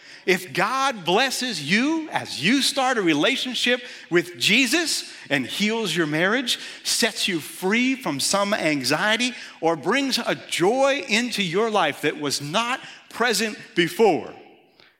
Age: 50-69